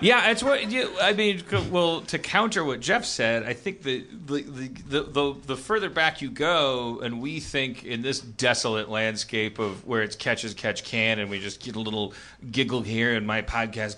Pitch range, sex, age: 115-150 Hz, male, 30-49